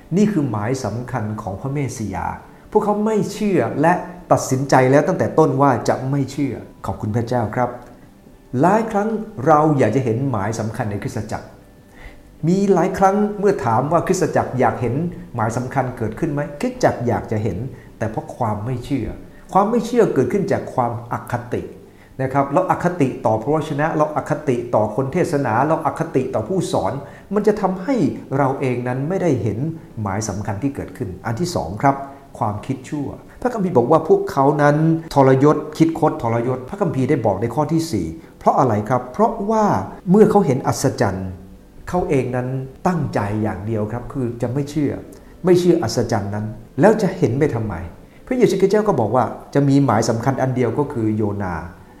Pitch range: 115-160 Hz